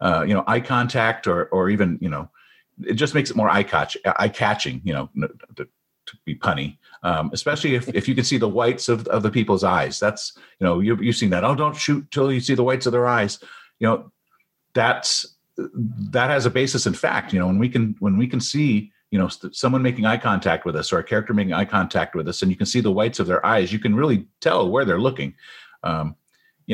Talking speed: 245 wpm